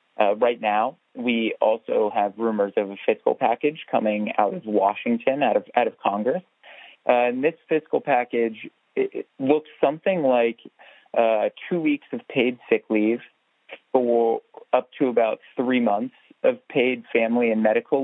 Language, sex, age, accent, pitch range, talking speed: English, male, 20-39, American, 110-140 Hz, 160 wpm